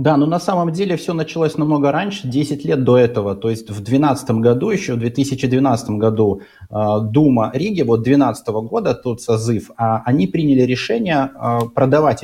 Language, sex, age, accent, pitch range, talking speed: Russian, male, 30-49, native, 120-155 Hz, 160 wpm